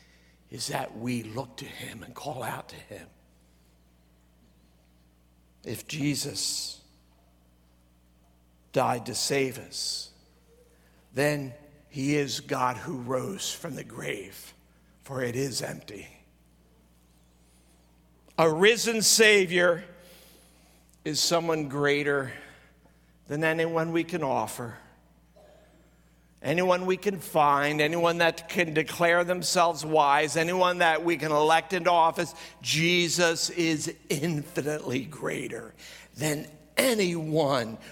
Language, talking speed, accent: English, 100 wpm, American